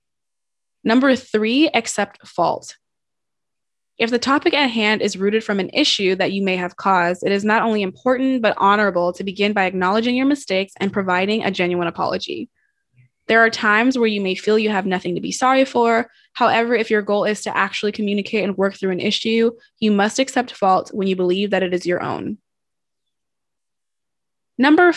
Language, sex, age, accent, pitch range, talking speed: English, female, 20-39, American, 190-230 Hz, 185 wpm